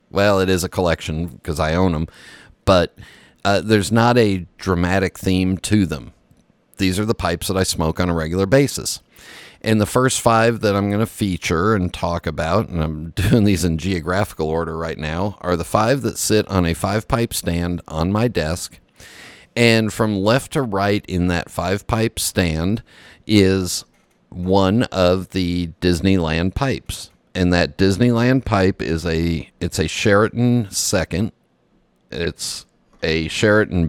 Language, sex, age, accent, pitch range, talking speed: English, male, 50-69, American, 85-105 Hz, 165 wpm